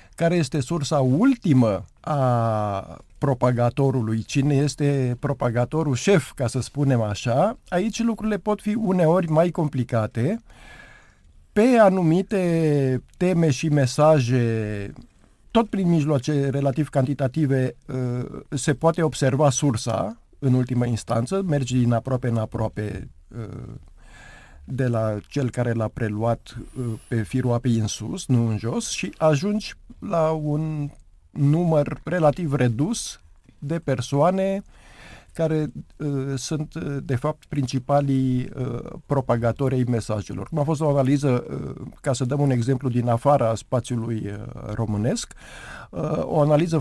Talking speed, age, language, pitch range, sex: 120 wpm, 50-69, Romanian, 120-155 Hz, male